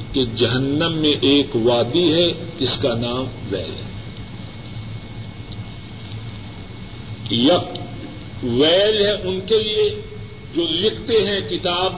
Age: 50-69